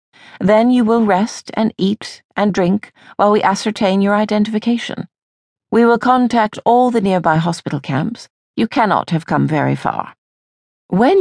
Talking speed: 150 wpm